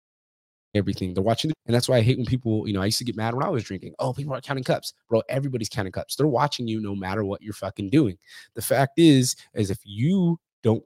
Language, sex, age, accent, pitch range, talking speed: English, male, 20-39, American, 100-125 Hz, 255 wpm